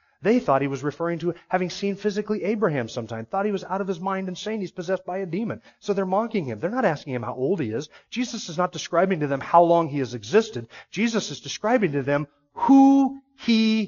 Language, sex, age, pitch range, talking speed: English, male, 40-59, 150-205 Hz, 240 wpm